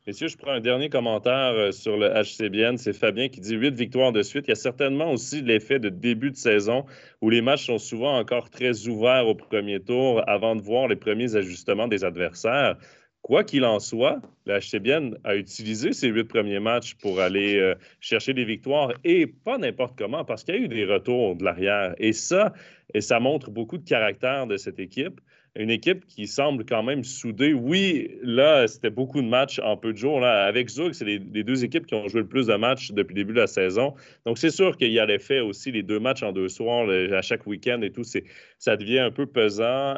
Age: 30-49